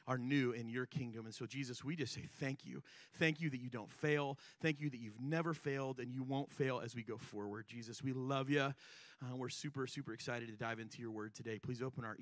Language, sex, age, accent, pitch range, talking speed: English, male, 30-49, American, 130-185 Hz, 250 wpm